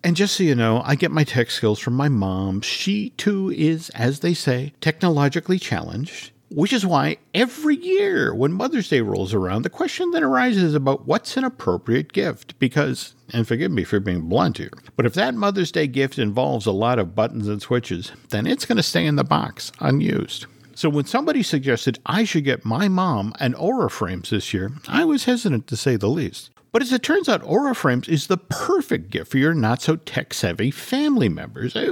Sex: male